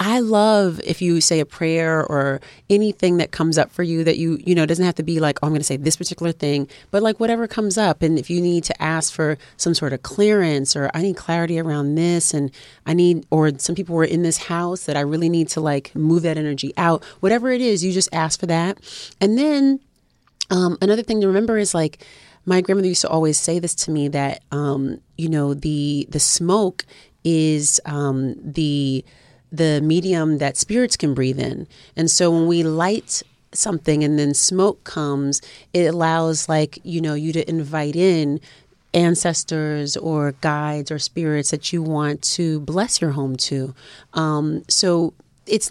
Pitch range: 150-175 Hz